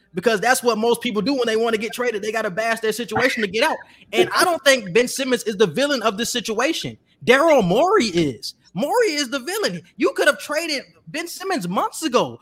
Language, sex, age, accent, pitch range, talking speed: English, male, 20-39, American, 190-255 Hz, 230 wpm